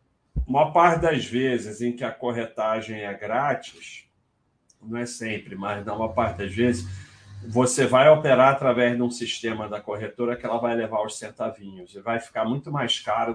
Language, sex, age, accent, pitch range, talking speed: Portuguese, male, 40-59, Brazilian, 120-160 Hz, 180 wpm